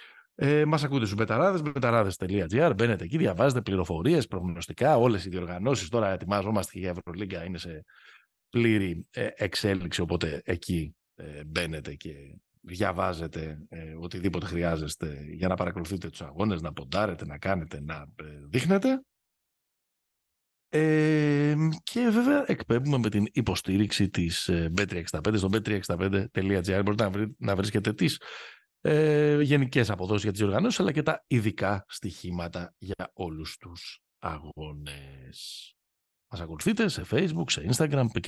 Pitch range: 85-125 Hz